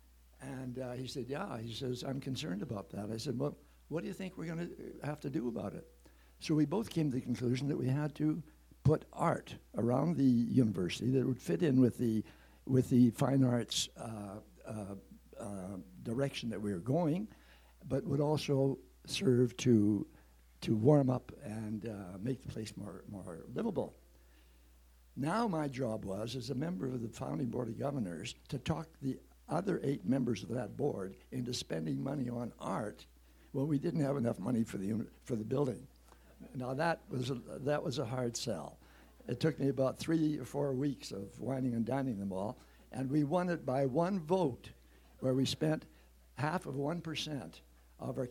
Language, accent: English, American